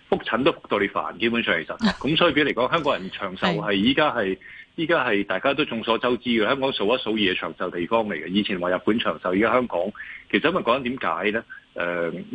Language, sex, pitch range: Chinese, male, 95-115 Hz